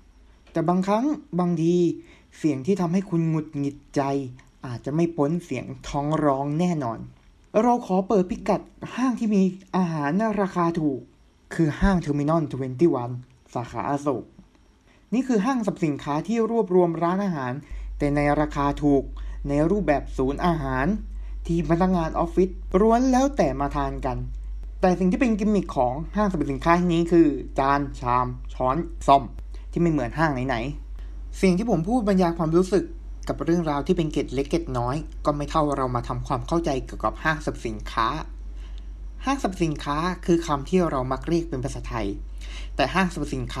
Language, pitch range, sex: Thai, 130-175 Hz, male